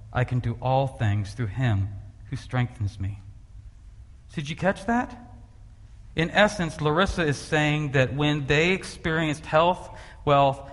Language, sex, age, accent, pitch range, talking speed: English, male, 40-59, American, 105-145 Hz, 140 wpm